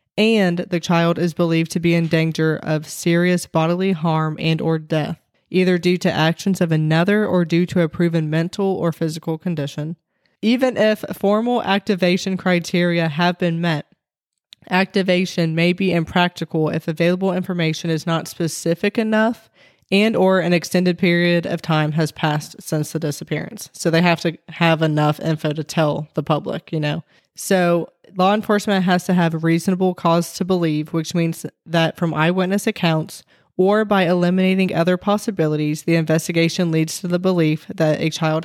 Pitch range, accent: 160-185 Hz, American